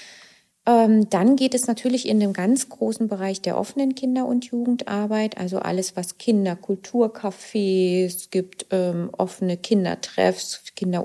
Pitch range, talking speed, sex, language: 175-235 Hz, 120 wpm, female, German